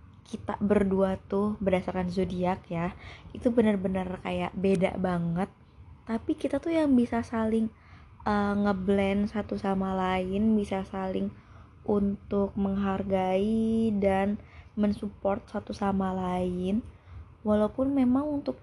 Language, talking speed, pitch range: Indonesian, 110 wpm, 195-220 Hz